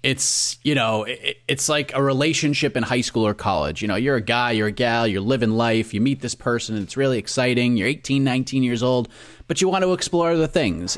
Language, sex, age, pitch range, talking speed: English, male, 30-49, 125-190 Hz, 235 wpm